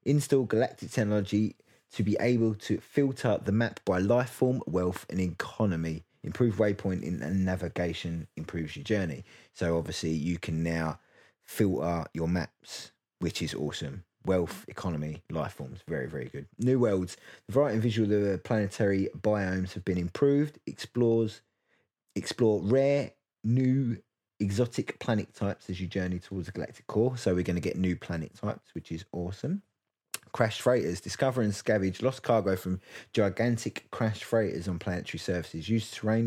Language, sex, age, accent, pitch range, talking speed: English, male, 30-49, British, 90-115 Hz, 155 wpm